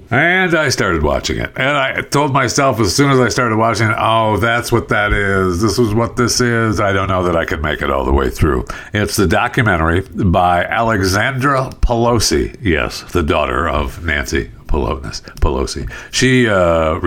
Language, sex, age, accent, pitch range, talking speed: English, male, 60-79, American, 80-120 Hz, 185 wpm